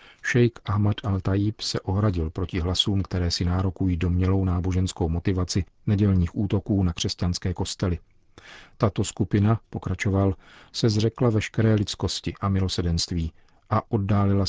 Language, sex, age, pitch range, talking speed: Czech, male, 40-59, 95-110 Hz, 120 wpm